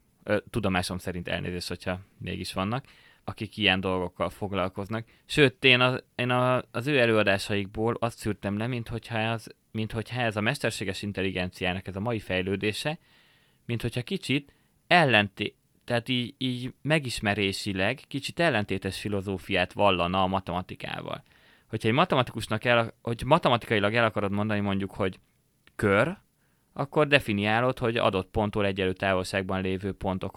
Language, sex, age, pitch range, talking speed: Hungarian, male, 20-39, 100-125 Hz, 130 wpm